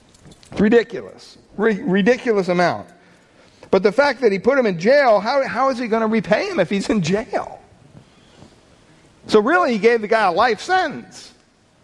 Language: English